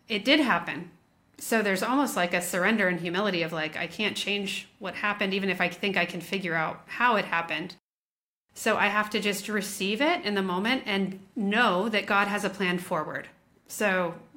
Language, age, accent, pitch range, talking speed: English, 30-49, American, 185-220 Hz, 200 wpm